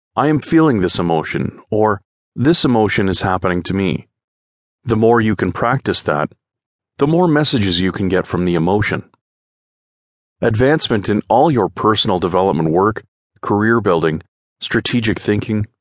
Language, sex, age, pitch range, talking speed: English, male, 40-59, 95-125 Hz, 145 wpm